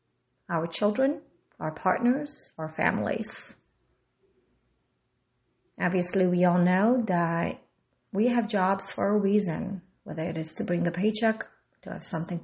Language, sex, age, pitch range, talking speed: English, female, 30-49, 165-225 Hz, 130 wpm